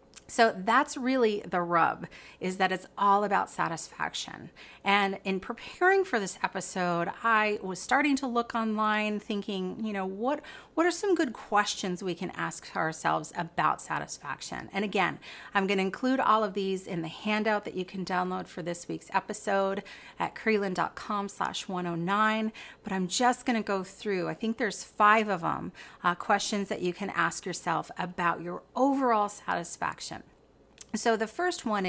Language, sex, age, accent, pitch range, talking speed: English, female, 30-49, American, 175-215 Hz, 170 wpm